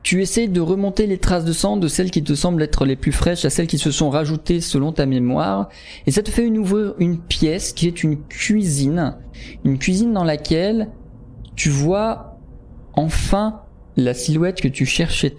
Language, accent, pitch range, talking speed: French, French, 145-195 Hz, 195 wpm